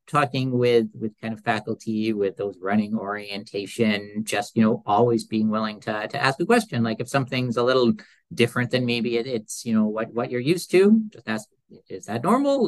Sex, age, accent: male, 50-69, American